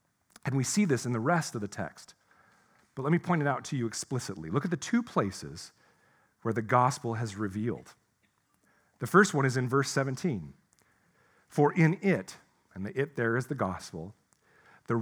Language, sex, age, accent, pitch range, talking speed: English, male, 40-59, American, 115-165 Hz, 190 wpm